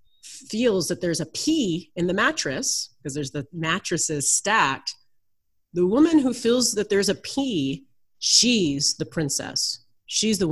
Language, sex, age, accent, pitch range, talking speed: English, female, 30-49, American, 175-240 Hz, 150 wpm